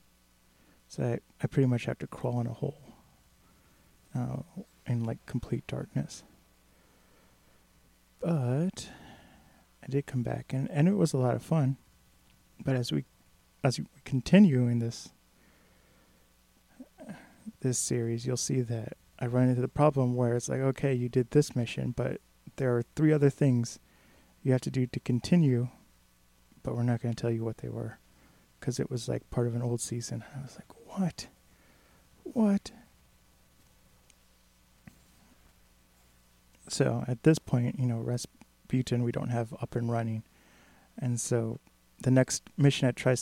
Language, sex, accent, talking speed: English, male, American, 155 wpm